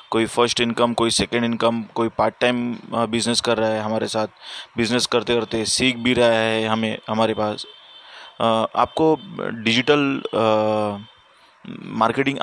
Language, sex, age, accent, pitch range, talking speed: Hindi, male, 20-39, native, 115-140 Hz, 135 wpm